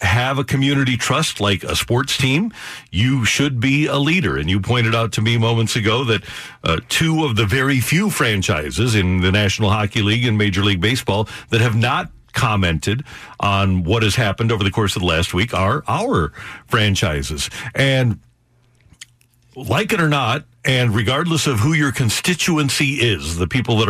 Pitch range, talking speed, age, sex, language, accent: 105-130 Hz, 180 wpm, 50-69, male, English, American